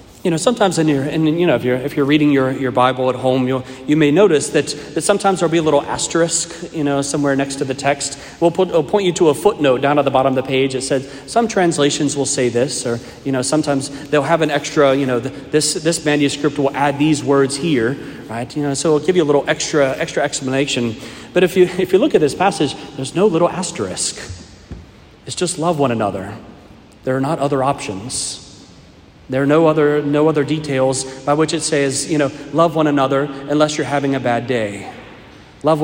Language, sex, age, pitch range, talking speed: English, male, 40-59, 125-155 Hz, 230 wpm